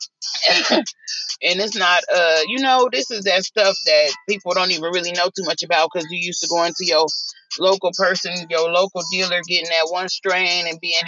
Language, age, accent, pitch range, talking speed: English, 30-49, American, 175-205 Hz, 200 wpm